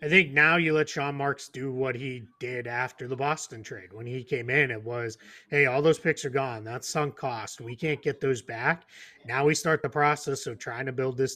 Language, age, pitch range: English, 30-49, 125-160 Hz